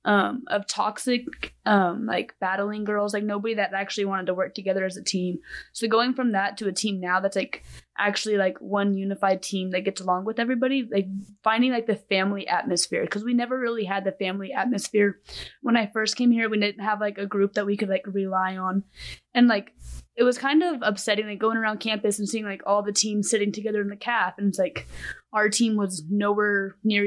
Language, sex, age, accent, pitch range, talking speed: English, female, 20-39, American, 200-230 Hz, 220 wpm